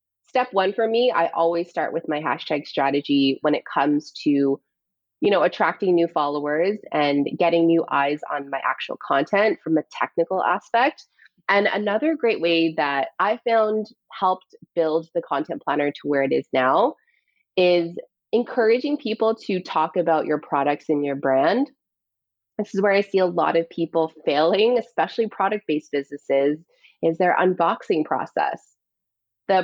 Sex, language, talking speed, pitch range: female, English, 160 wpm, 155-205 Hz